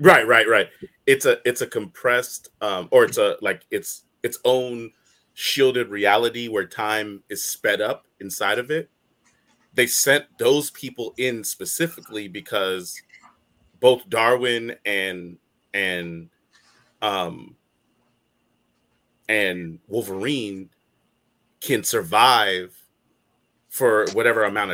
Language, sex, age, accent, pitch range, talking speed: English, male, 30-49, American, 90-135 Hz, 110 wpm